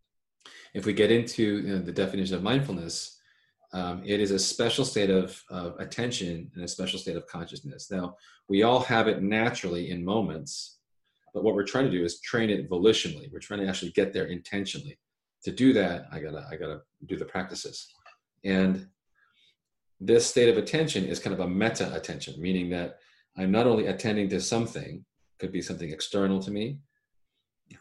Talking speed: 190 wpm